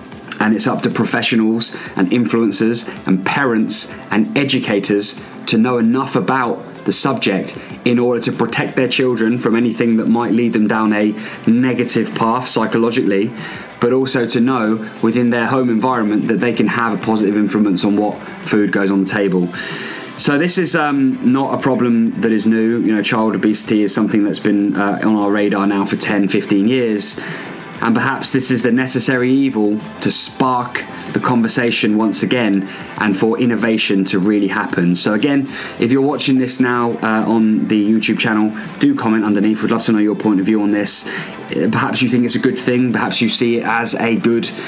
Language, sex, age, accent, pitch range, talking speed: English, male, 20-39, British, 105-125 Hz, 190 wpm